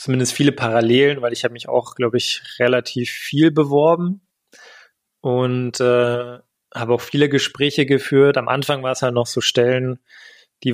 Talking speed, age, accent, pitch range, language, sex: 160 wpm, 20-39, German, 120-135 Hz, German, male